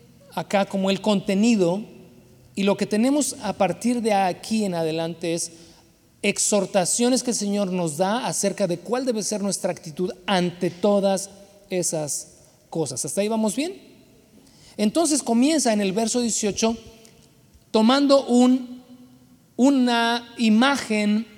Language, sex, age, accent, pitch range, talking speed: Spanish, male, 40-59, Mexican, 160-210 Hz, 130 wpm